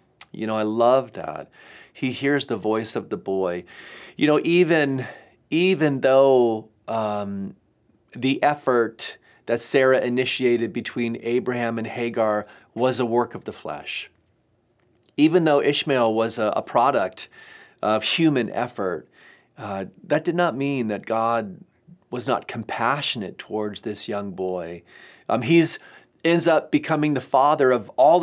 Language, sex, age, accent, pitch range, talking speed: English, male, 40-59, American, 115-140 Hz, 140 wpm